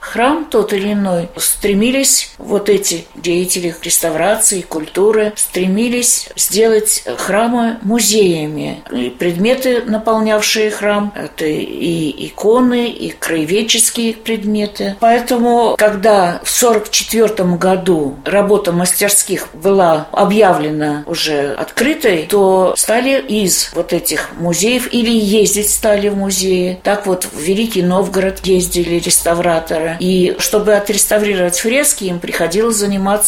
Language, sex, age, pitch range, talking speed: Russian, female, 50-69, 180-220 Hz, 110 wpm